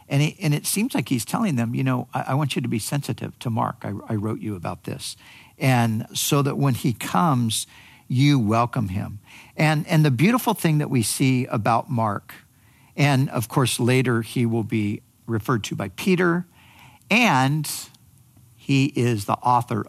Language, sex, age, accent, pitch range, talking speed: English, male, 50-69, American, 115-140 Hz, 185 wpm